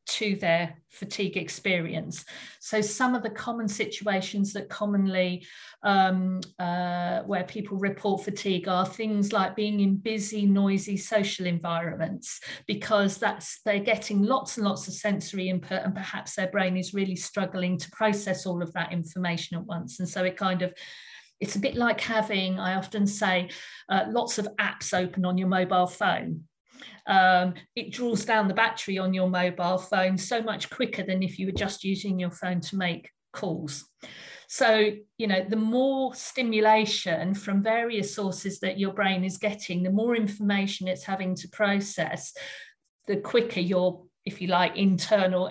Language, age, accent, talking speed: English, 50-69, British, 165 wpm